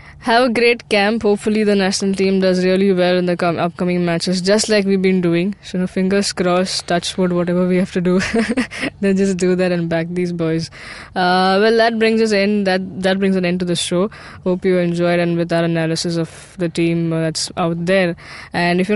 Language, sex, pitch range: English, female, 175-205 Hz